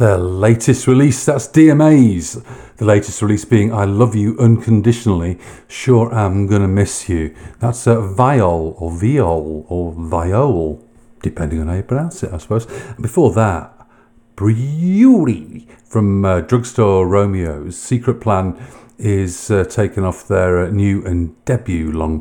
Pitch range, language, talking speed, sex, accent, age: 90-120 Hz, English, 145 wpm, male, British, 50-69